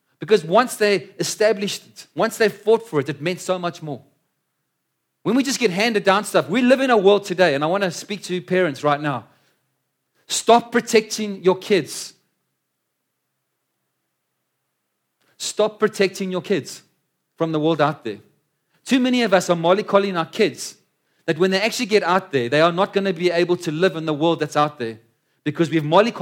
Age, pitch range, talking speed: 40-59, 155-200 Hz, 190 wpm